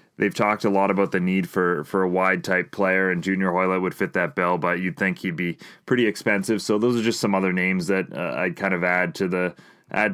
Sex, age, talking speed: male, 20-39, 255 wpm